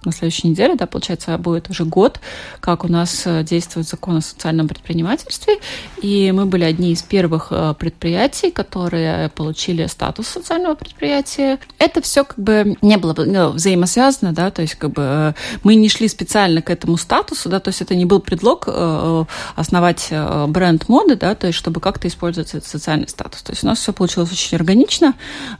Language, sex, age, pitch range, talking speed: Russian, female, 30-49, 165-205 Hz, 175 wpm